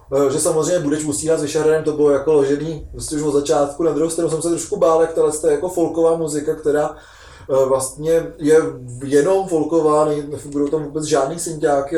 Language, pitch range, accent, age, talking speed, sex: Czech, 140-165 Hz, native, 20-39, 175 wpm, male